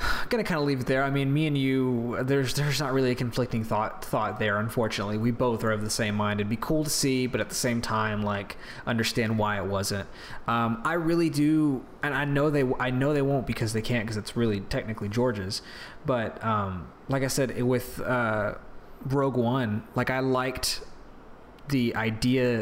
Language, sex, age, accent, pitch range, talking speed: English, male, 20-39, American, 105-130 Hz, 205 wpm